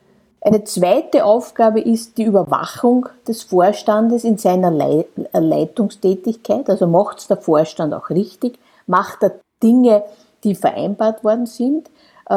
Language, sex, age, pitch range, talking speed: German, female, 50-69, 185-225 Hz, 120 wpm